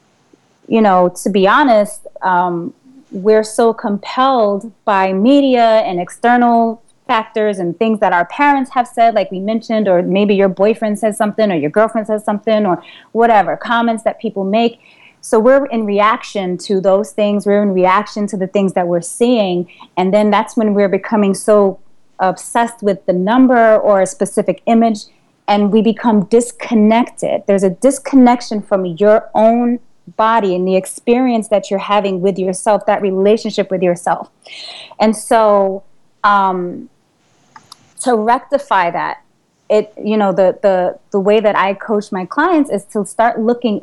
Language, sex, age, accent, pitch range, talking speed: English, female, 30-49, American, 200-235 Hz, 160 wpm